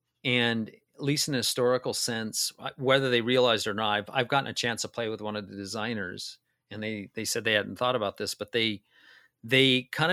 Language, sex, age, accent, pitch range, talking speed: English, male, 40-59, American, 105-125 Hz, 220 wpm